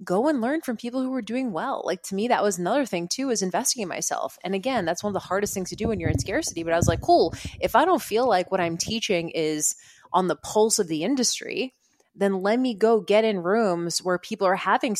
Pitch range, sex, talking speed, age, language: 170-220 Hz, female, 265 wpm, 20-39, English